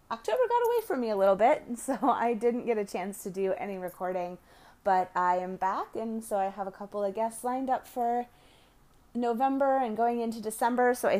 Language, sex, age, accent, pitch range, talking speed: English, female, 30-49, American, 185-230 Hz, 215 wpm